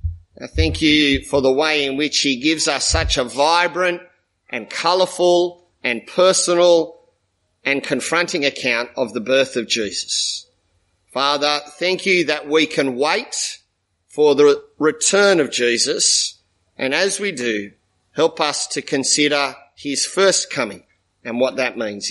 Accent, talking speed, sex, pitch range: Australian, 140 wpm, male, 140-200 Hz